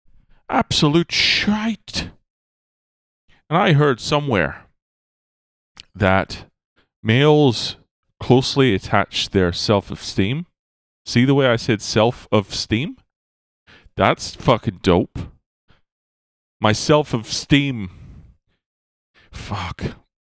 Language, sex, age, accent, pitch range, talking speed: English, male, 30-49, American, 75-120 Hz, 70 wpm